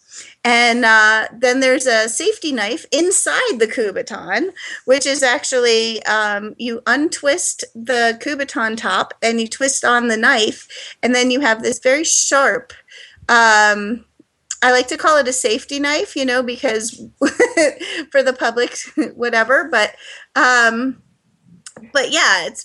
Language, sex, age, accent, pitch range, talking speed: English, female, 30-49, American, 230-285 Hz, 140 wpm